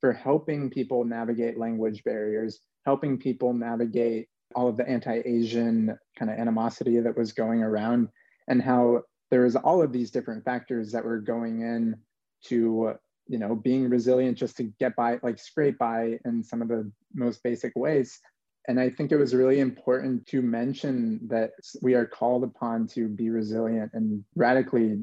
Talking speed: 170 wpm